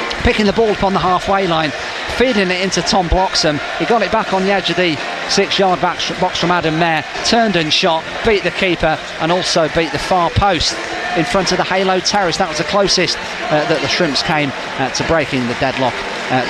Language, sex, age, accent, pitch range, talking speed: English, male, 40-59, British, 170-200 Hz, 220 wpm